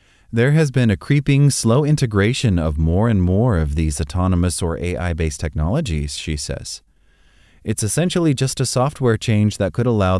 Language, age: English, 30-49